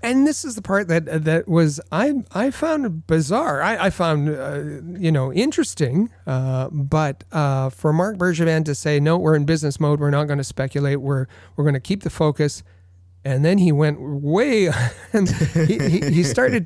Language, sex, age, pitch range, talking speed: English, male, 40-59, 135-170 Hz, 195 wpm